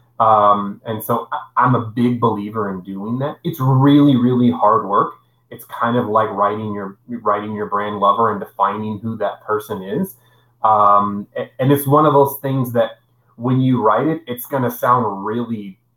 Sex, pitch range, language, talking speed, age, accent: male, 115-140 Hz, English, 175 wpm, 30-49, American